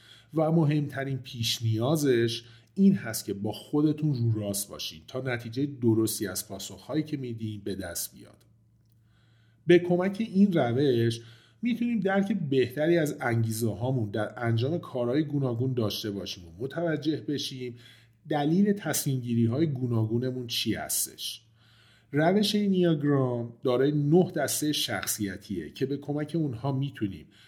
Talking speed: 125 wpm